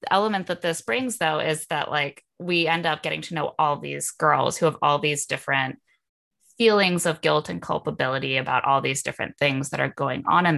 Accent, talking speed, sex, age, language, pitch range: American, 210 wpm, female, 20-39, English, 140-170 Hz